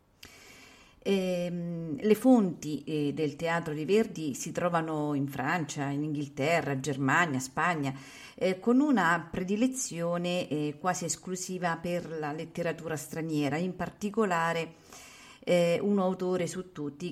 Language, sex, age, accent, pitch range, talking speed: Italian, female, 40-59, native, 155-215 Hz, 120 wpm